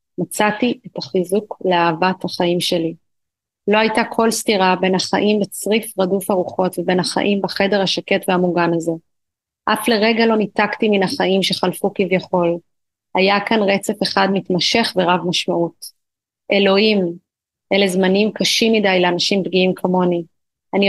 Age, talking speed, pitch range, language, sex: 30-49, 130 wpm, 180-205 Hz, Hebrew, female